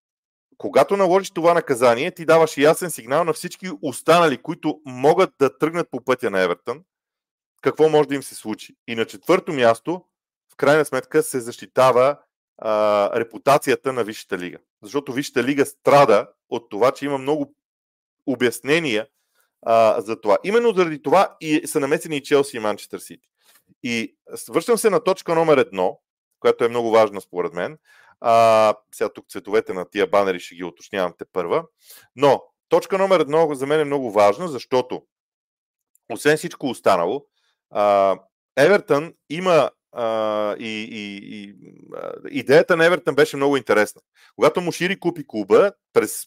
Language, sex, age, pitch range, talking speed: Bulgarian, male, 40-59, 120-180 Hz, 155 wpm